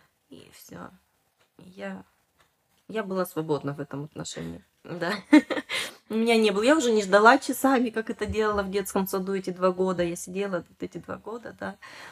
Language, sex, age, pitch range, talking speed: Russian, female, 20-39, 180-230 Hz, 170 wpm